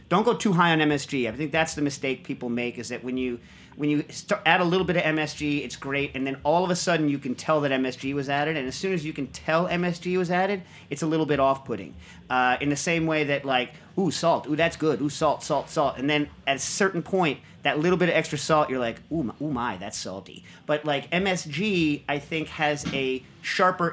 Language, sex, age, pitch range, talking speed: English, male, 40-59, 135-165 Hz, 250 wpm